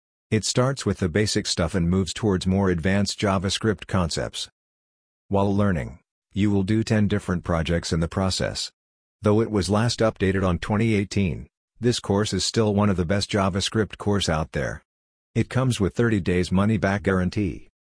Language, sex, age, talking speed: English, male, 50-69, 170 wpm